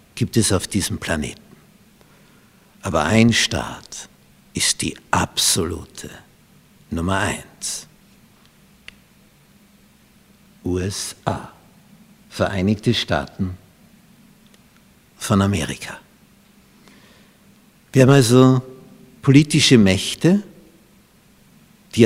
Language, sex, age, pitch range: German, male, 60-79, 100-155 Hz